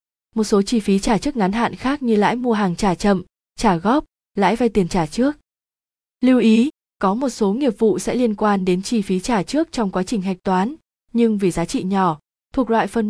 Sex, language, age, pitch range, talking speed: female, Vietnamese, 20-39, 185-235 Hz, 230 wpm